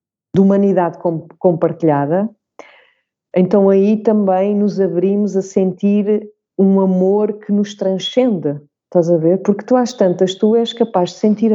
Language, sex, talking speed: English, female, 140 wpm